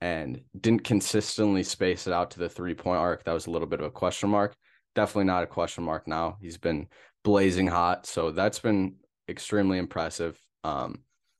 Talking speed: 185 wpm